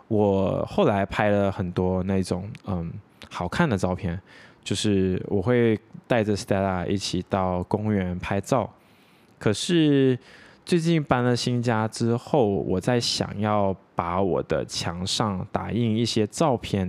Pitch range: 95-120 Hz